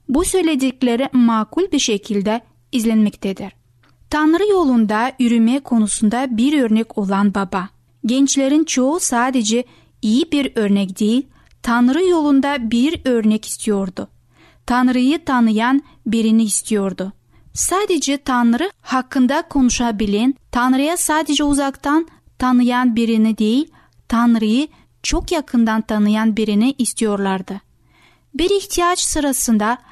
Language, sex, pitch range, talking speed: Turkish, female, 225-285 Hz, 100 wpm